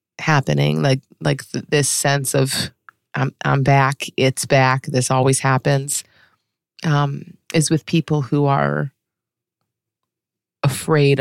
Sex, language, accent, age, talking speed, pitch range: female, English, American, 30-49, 110 wpm, 120-140 Hz